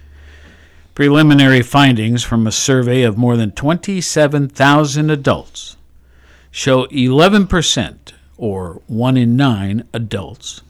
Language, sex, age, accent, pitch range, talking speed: English, male, 60-79, American, 95-135 Hz, 95 wpm